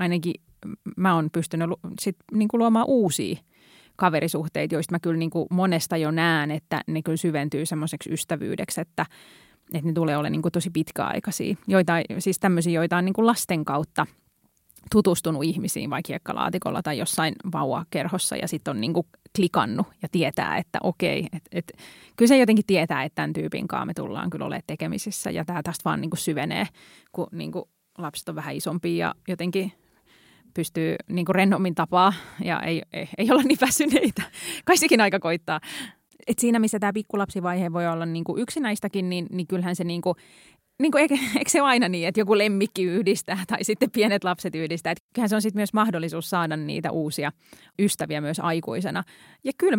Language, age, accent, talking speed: Finnish, 20-39, native, 170 wpm